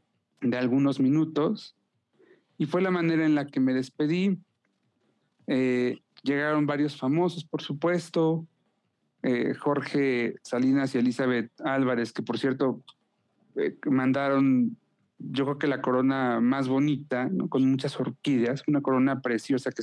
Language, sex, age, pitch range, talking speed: Spanish, male, 40-59, 125-150 Hz, 135 wpm